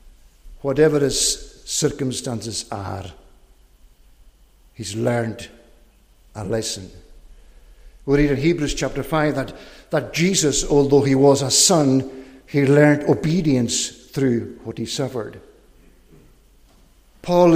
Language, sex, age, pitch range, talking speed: English, male, 60-79, 120-155 Hz, 100 wpm